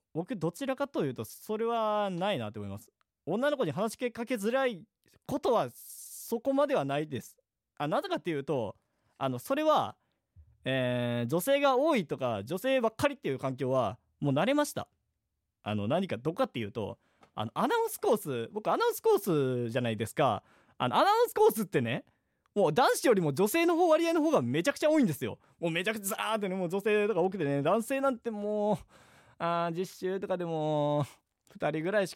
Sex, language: male, Japanese